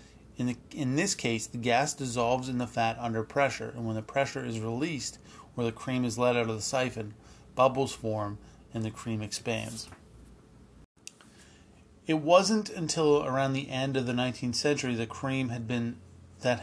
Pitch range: 115-135 Hz